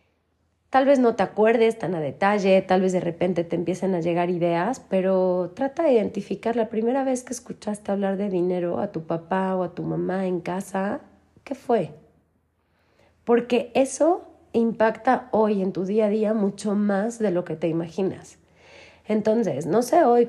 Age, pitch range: 30-49, 175-220 Hz